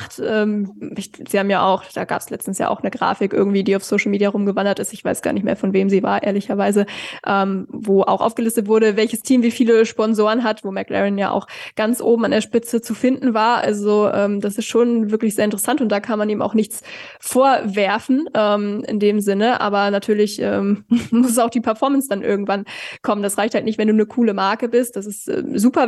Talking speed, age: 225 wpm, 20-39